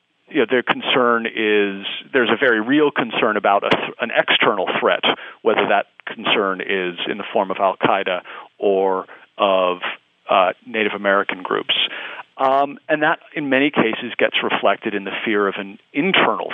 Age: 40-59